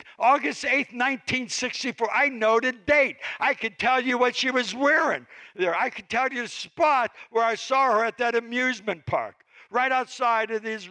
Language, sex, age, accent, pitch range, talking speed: English, male, 60-79, American, 145-245 Hz, 185 wpm